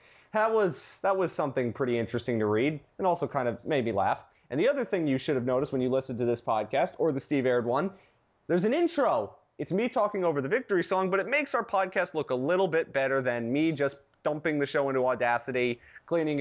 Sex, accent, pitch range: male, American, 125-195 Hz